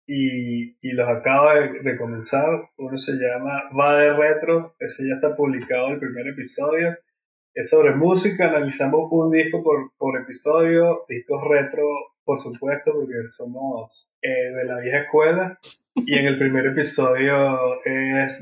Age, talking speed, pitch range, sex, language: 20-39, 155 wpm, 130-170 Hz, male, Spanish